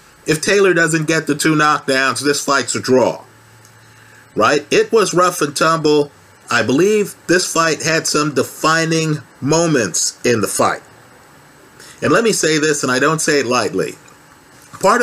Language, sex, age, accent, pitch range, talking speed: English, male, 50-69, American, 140-165 Hz, 160 wpm